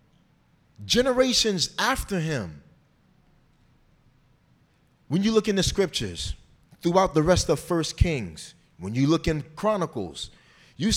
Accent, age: American, 30-49